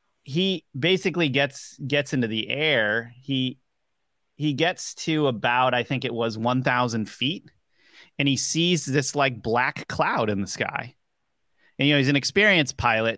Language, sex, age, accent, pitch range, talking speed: English, male, 30-49, American, 120-150 Hz, 160 wpm